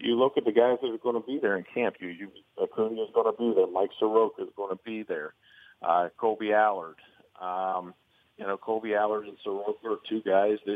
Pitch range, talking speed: 95-115 Hz, 230 wpm